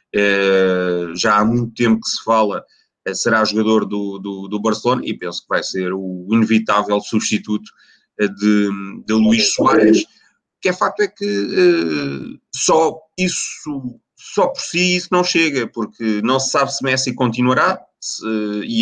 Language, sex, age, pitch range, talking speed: Portuguese, male, 30-49, 105-130 Hz, 145 wpm